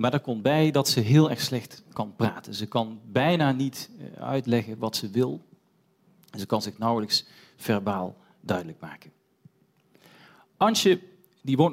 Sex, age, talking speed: male, 40-59, 150 wpm